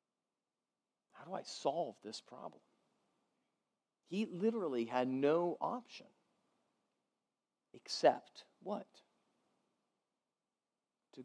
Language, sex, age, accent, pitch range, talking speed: English, male, 40-59, American, 135-220 Hz, 75 wpm